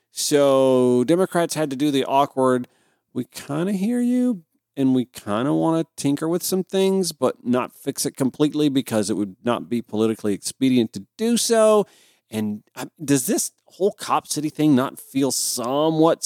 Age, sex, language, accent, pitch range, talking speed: 40-59, male, English, American, 125-165 Hz, 175 wpm